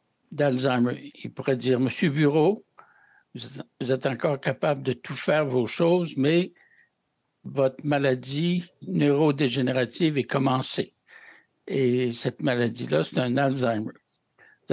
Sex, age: male, 60-79